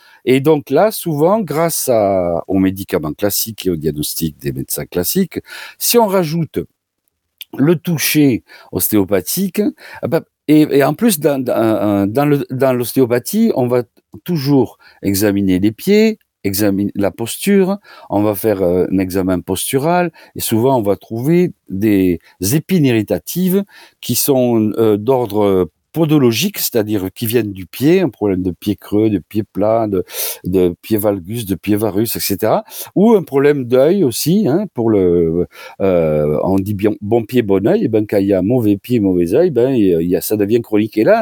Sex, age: male, 50-69